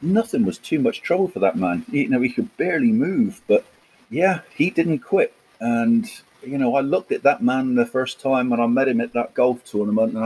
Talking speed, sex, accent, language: 230 wpm, male, British, English